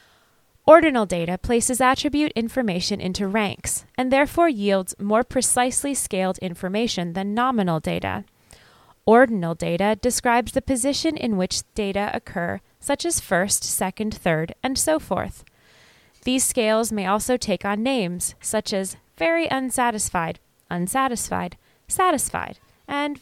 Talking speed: 125 wpm